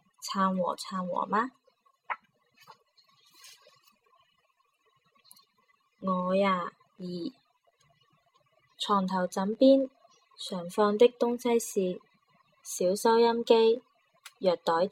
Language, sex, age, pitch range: Chinese, female, 20-39, 185-250 Hz